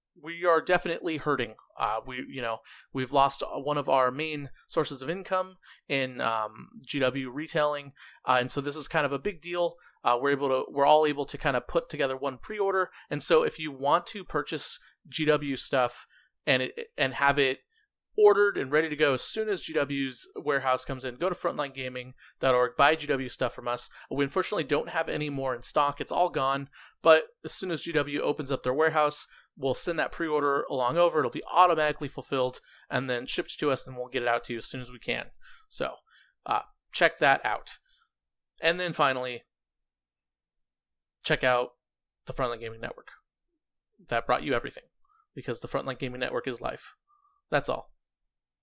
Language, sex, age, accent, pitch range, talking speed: English, male, 30-49, American, 130-170 Hz, 190 wpm